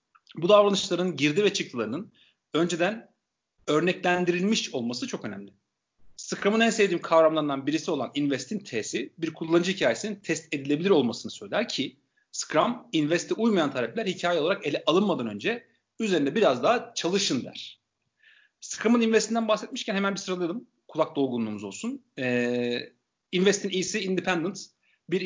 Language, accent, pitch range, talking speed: Turkish, native, 145-200 Hz, 130 wpm